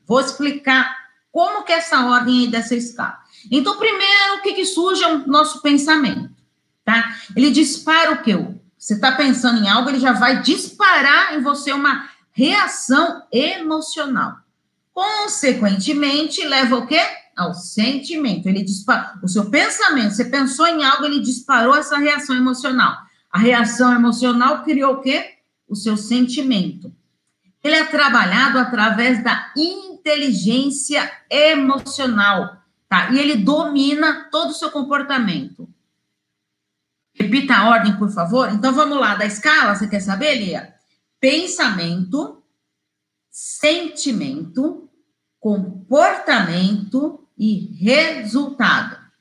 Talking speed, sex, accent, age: 125 wpm, female, Brazilian, 40-59